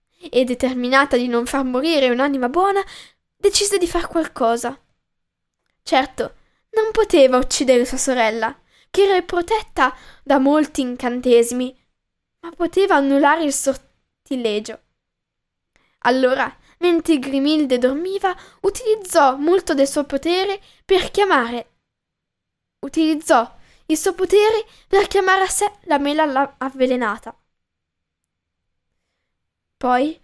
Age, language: 10-29, Italian